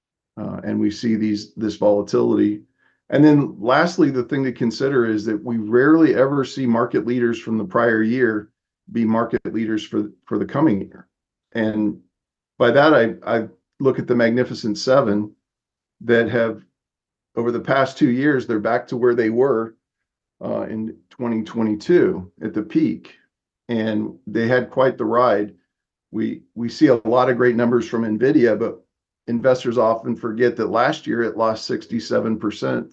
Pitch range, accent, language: 110-130 Hz, American, English